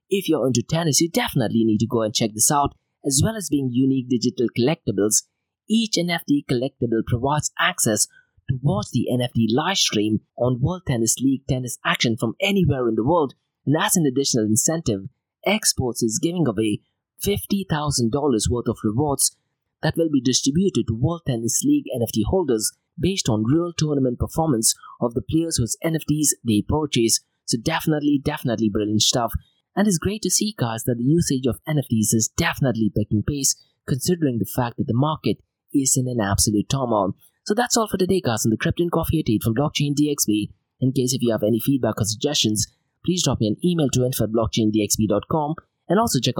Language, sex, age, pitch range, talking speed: English, male, 30-49, 115-155 Hz, 185 wpm